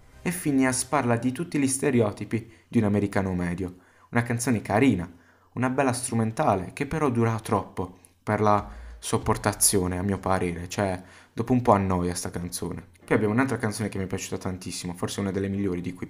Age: 20-39